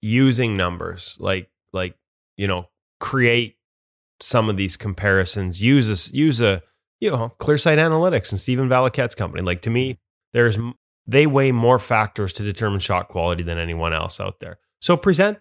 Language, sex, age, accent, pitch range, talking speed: English, male, 20-39, American, 95-130 Hz, 170 wpm